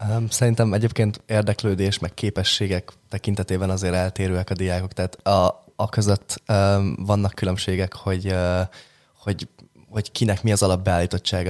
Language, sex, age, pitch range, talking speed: Hungarian, male, 20-39, 90-105 Hz, 120 wpm